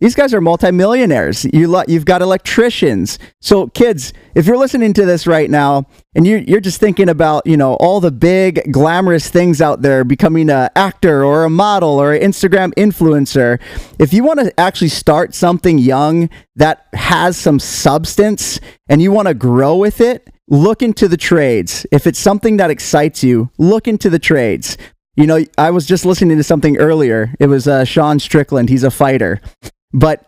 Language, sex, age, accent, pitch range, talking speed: English, male, 30-49, American, 145-200 Hz, 185 wpm